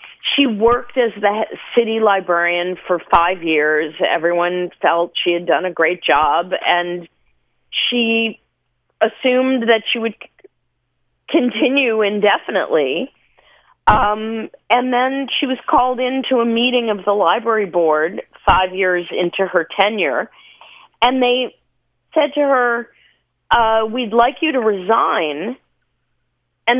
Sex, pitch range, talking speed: female, 175-240 Hz, 125 wpm